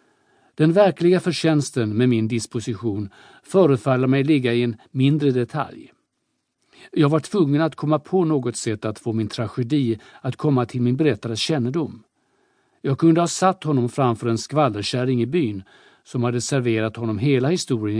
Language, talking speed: Swedish, 155 wpm